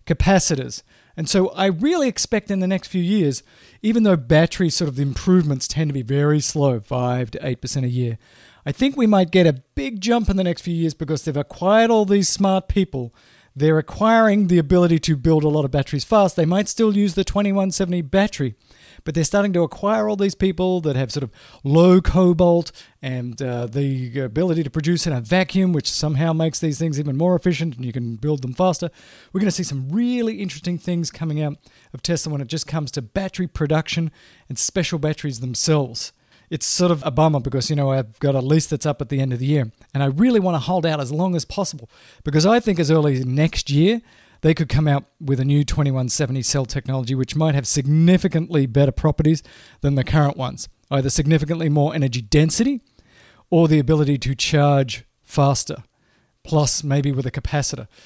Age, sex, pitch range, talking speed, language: 40-59, male, 140-180 Hz, 210 wpm, English